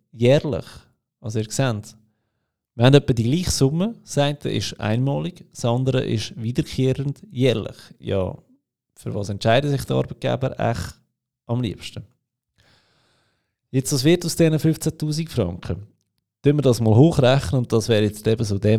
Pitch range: 100-125 Hz